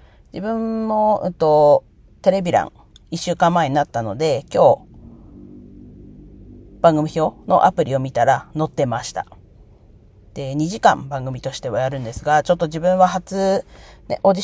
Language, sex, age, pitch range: Japanese, female, 40-59, 120-165 Hz